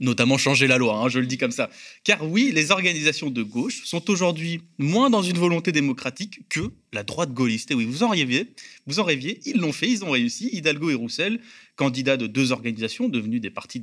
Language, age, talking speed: French, 30-49, 220 wpm